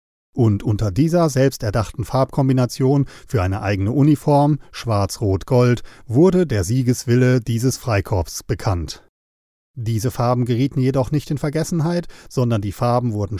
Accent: German